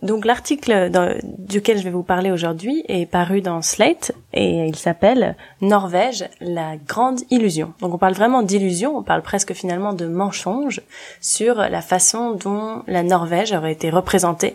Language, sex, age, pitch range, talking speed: French, female, 20-39, 180-235 Hz, 160 wpm